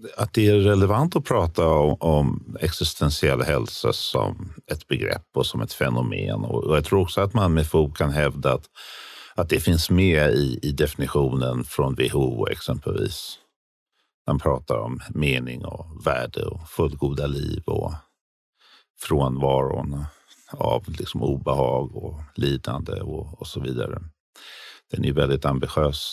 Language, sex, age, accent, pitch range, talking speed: Swedish, male, 50-69, native, 75-95 Hz, 140 wpm